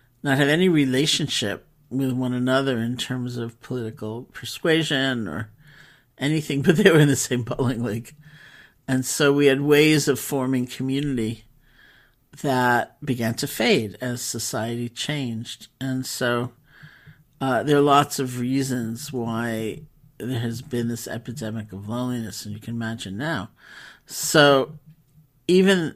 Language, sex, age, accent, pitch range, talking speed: English, male, 50-69, American, 120-145 Hz, 140 wpm